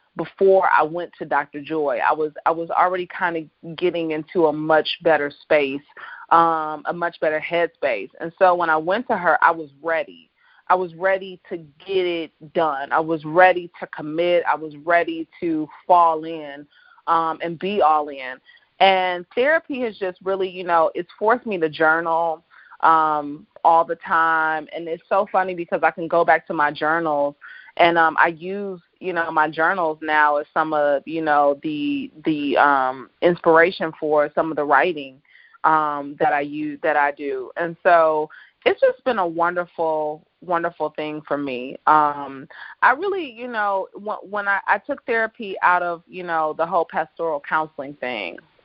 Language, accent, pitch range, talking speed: English, American, 155-185 Hz, 180 wpm